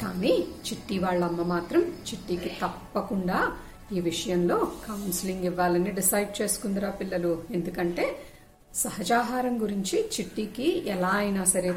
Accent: native